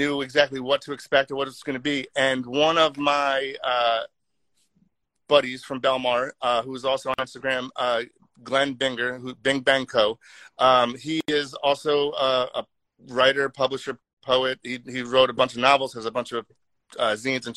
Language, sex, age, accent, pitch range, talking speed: English, male, 30-49, American, 130-145 Hz, 190 wpm